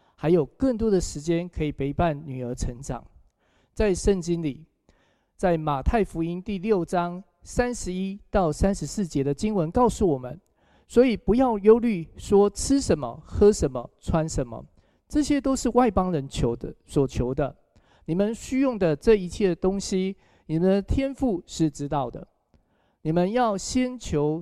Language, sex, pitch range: Chinese, male, 145-205 Hz